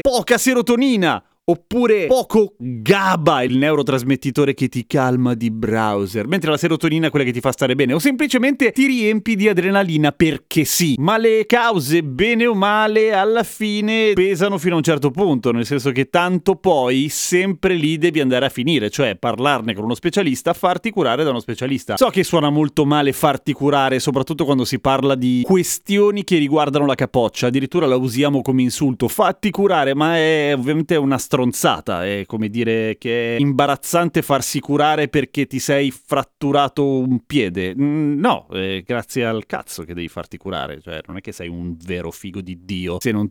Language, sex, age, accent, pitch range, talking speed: Italian, male, 30-49, native, 120-175 Hz, 180 wpm